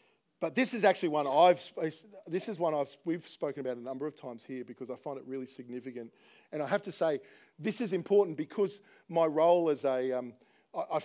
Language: English